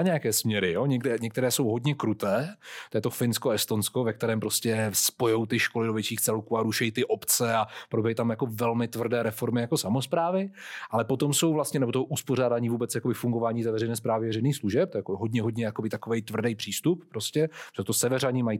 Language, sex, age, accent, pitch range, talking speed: Czech, male, 30-49, native, 115-150 Hz, 205 wpm